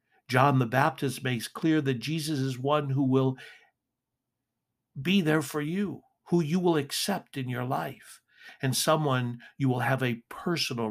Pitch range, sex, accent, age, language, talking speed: 125-150 Hz, male, American, 60-79, English, 160 wpm